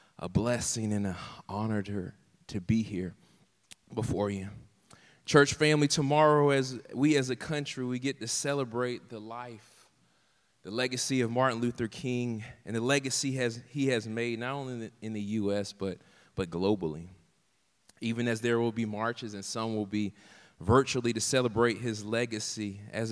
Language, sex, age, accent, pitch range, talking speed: English, male, 20-39, American, 105-125 Hz, 165 wpm